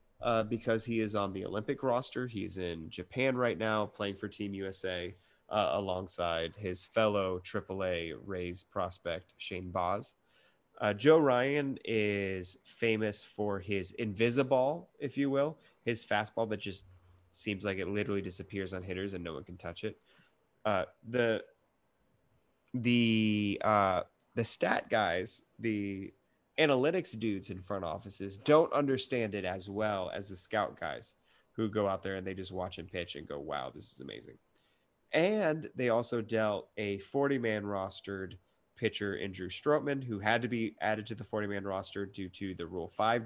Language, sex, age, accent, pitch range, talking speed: English, male, 30-49, American, 95-110 Hz, 160 wpm